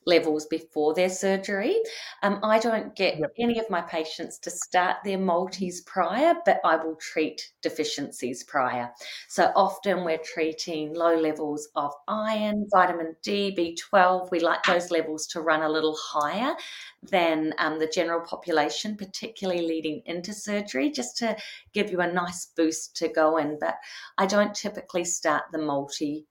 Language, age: English, 30-49